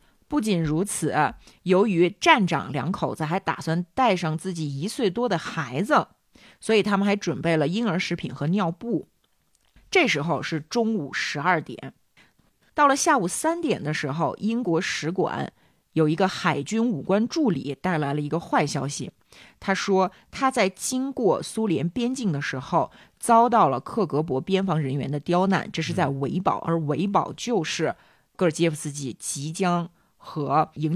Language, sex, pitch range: Chinese, female, 150-200 Hz